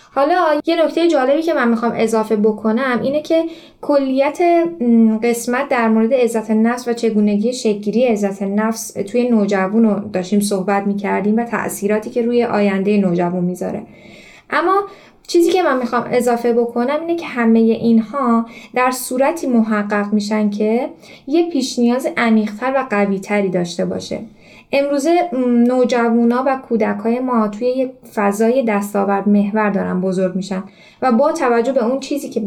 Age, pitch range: 10-29, 210-260 Hz